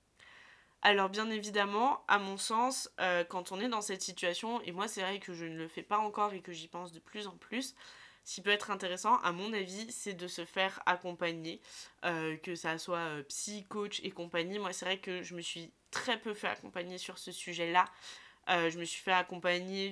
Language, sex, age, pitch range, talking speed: French, female, 20-39, 180-215 Hz, 225 wpm